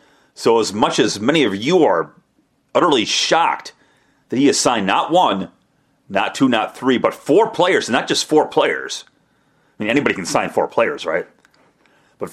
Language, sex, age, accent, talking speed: English, male, 40-59, American, 180 wpm